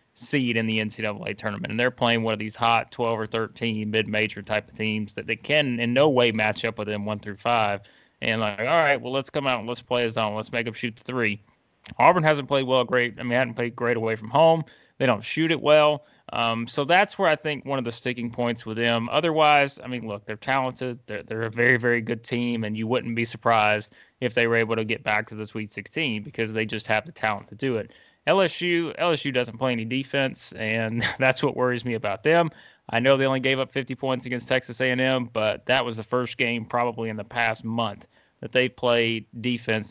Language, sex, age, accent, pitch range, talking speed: English, male, 20-39, American, 110-135 Hz, 240 wpm